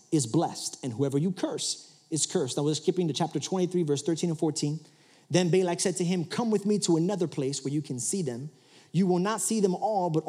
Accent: American